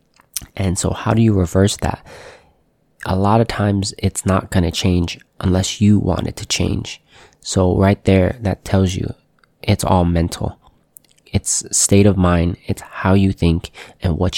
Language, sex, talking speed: English, male, 170 wpm